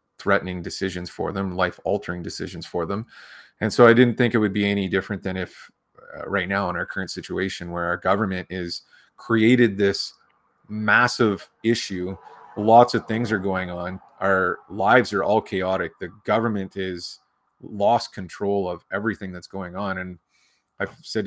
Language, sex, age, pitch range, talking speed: English, male, 30-49, 95-110 Hz, 165 wpm